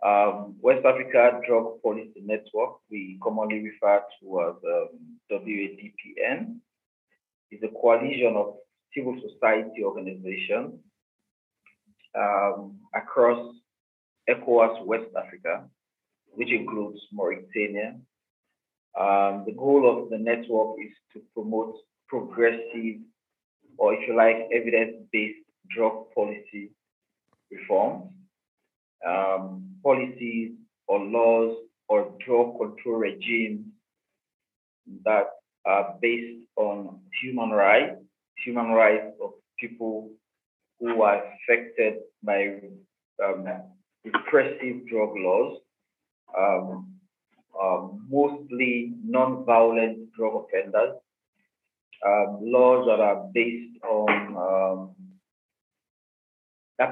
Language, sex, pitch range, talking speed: English, male, 105-130 Hz, 90 wpm